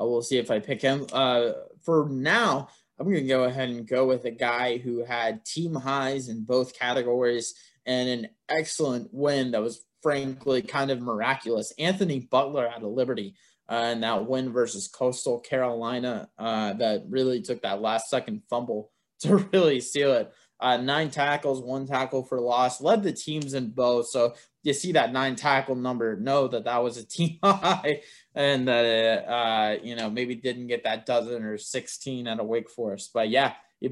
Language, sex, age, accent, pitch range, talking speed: English, male, 20-39, American, 115-135 Hz, 185 wpm